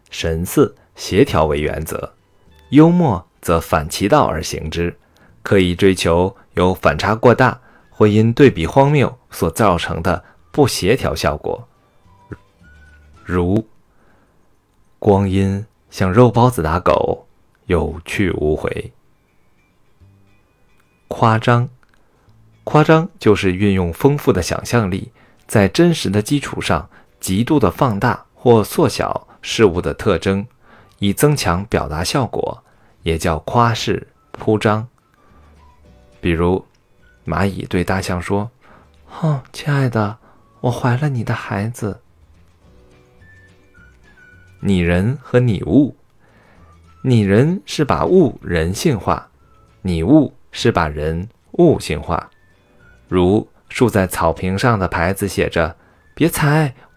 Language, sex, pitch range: Chinese, male, 90-120 Hz